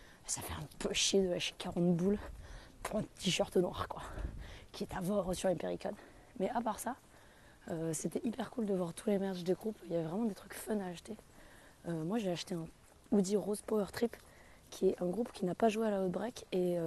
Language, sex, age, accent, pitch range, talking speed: French, female, 20-39, French, 180-225 Hz, 235 wpm